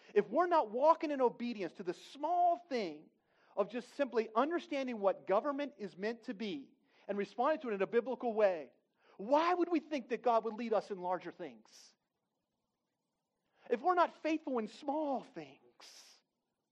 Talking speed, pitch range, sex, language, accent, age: 170 wpm, 185-265 Hz, male, English, American, 40-59